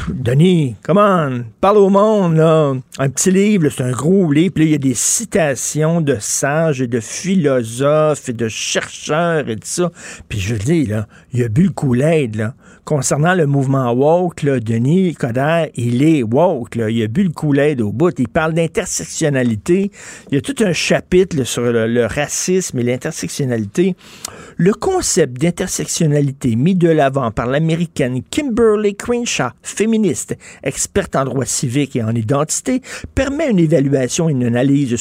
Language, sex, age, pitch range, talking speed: French, male, 50-69, 135-190 Hz, 175 wpm